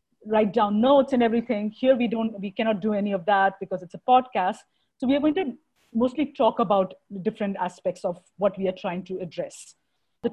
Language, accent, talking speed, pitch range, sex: English, Indian, 215 wpm, 195-235 Hz, female